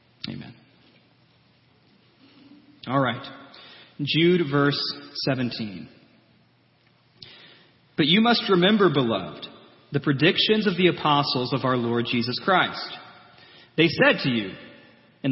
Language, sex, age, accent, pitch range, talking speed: English, male, 30-49, American, 135-180 Hz, 100 wpm